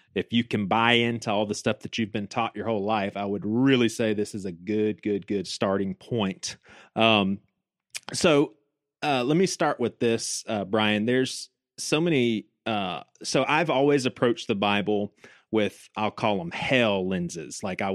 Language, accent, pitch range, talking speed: English, American, 105-135 Hz, 185 wpm